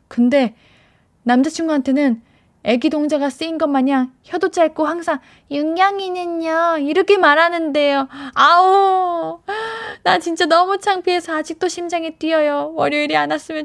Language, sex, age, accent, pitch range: Korean, female, 10-29, native, 225-330 Hz